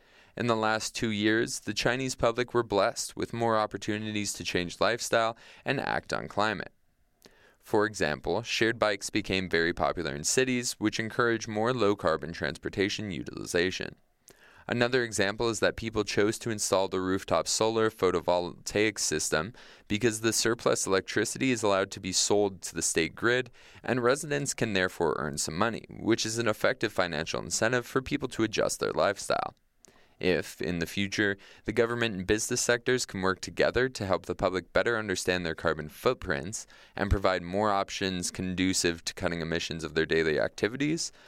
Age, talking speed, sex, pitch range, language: 20-39, 165 wpm, male, 95-120 Hz, English